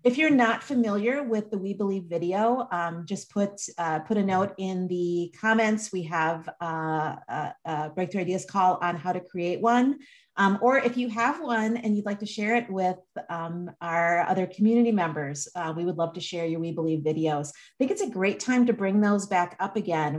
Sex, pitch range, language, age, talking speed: female, 165-215 Hz, English, 40-59, 215 wpm